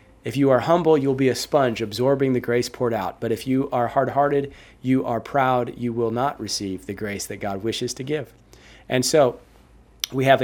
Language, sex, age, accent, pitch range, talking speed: English, male, 40-59, American, 115-140 Hz, 205 wpm